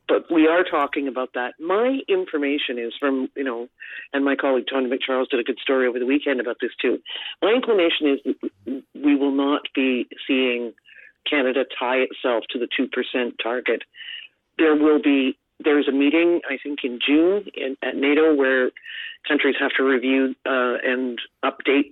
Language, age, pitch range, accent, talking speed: English, 50-69, 130-155 Hz, American, 170 wpm